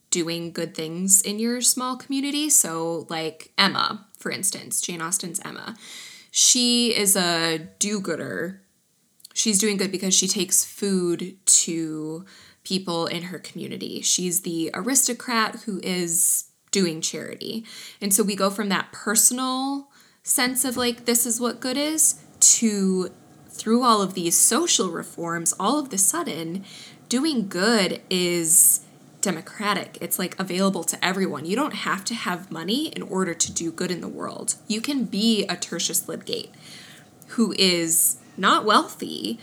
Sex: female